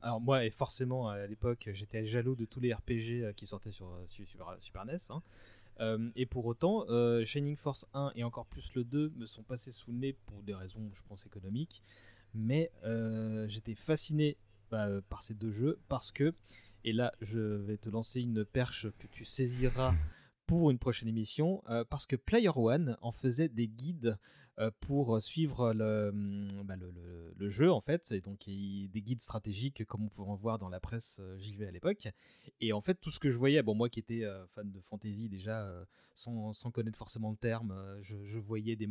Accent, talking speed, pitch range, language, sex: French, 200 wpm, 105-125 Hz, French, male